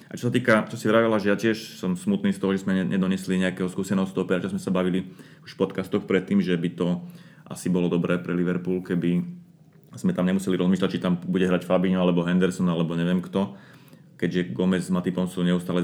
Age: 30-49